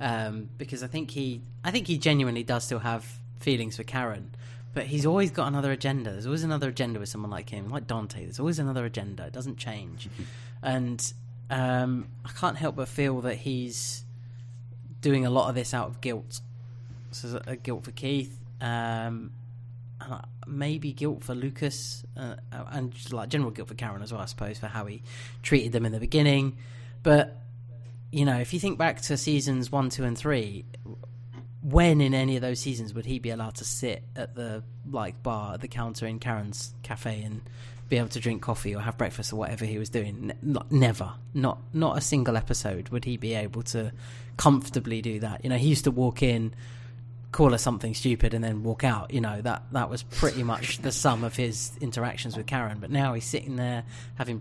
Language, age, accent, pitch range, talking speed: English, 30-49, British, 115-130 Hz, 205 wpm